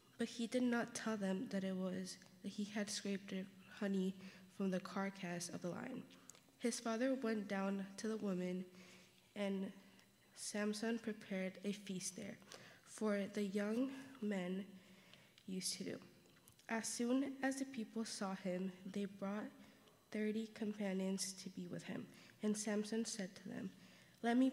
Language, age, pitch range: English, 20-39, 195-220 Hz